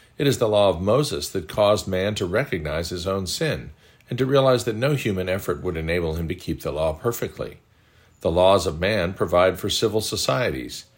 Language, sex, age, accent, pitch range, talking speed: English, male, 50-69, American, 85-115 Hz, 200 wpm